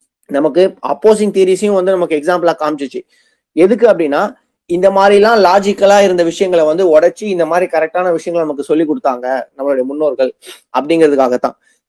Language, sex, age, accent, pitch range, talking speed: Tamil, male, 20-39, native, 150-195 Hz, 130 wpm